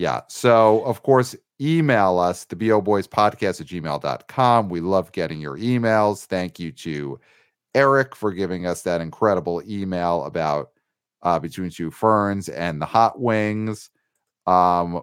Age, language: 40-59, English